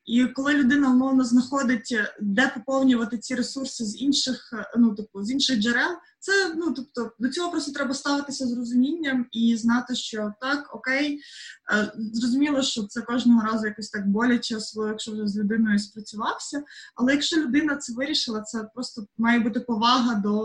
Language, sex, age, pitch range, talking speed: Ukrainian, female, 20-39, 210-255 Hz, 165 wpm